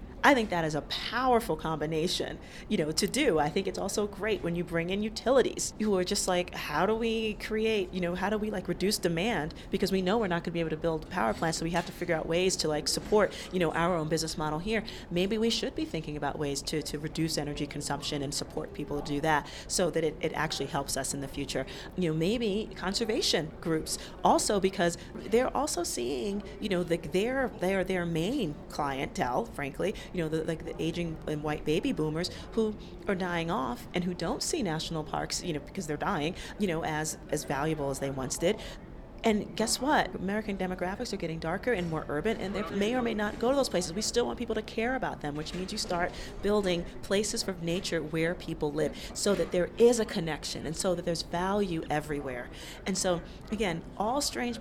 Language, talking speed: English, 225 wpm